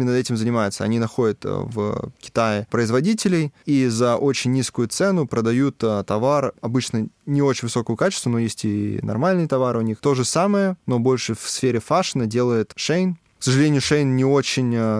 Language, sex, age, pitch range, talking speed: Russian, male, 20-39, 110-135 Hz, 170 wpm